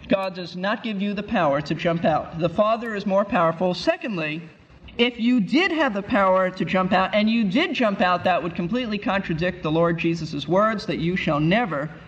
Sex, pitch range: male, 165-240 Hz